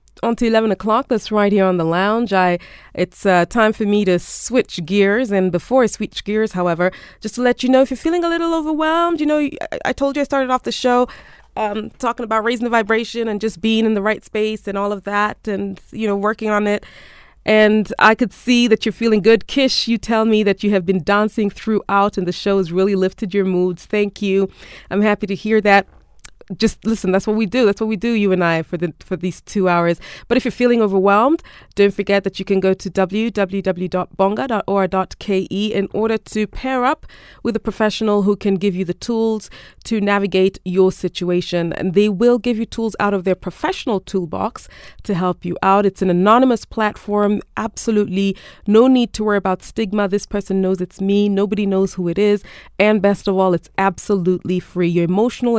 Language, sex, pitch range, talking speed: English, female, 190-225 Hz, 210 wpm